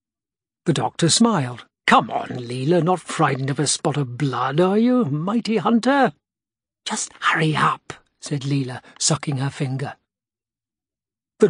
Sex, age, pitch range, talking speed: male, 60-79, 140-215 Hz, 135 wpm